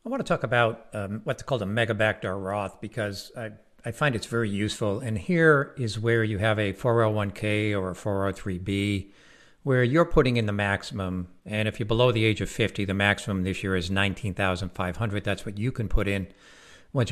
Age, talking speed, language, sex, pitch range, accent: 60-79, 195 wpm, English, male, 100-125 Hz, American